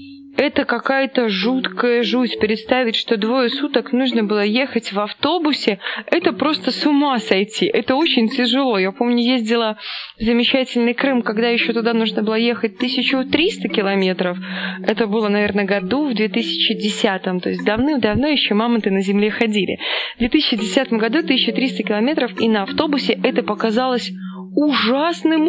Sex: female